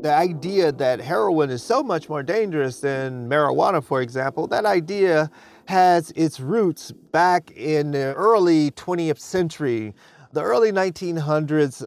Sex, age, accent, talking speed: male, 40-59, American, 135 wpm